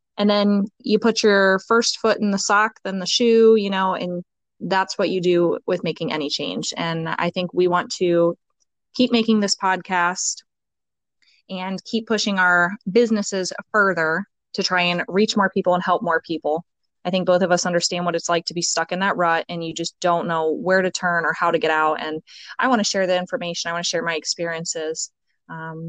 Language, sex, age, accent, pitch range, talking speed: English, female, 20-39, American, 175-210 Hz, 215 wpm